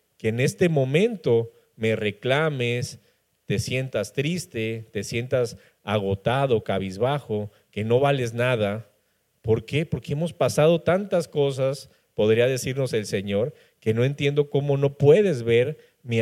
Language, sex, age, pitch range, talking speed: Spanish, male, 40-59, 110-145 Hz, 135 wpm